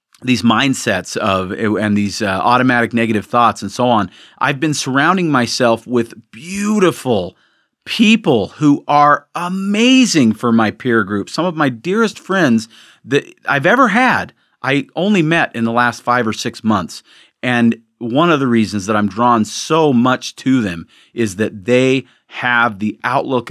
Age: 40-59